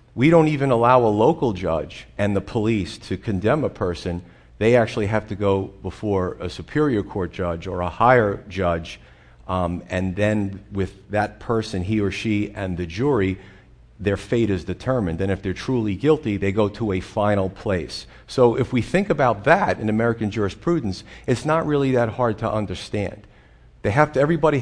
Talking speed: 185 wpm